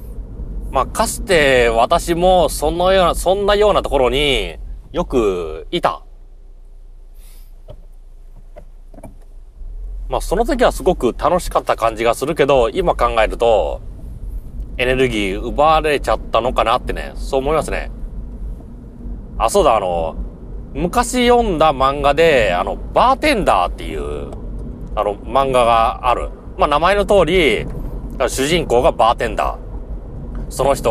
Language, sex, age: Japanese, male, 30-49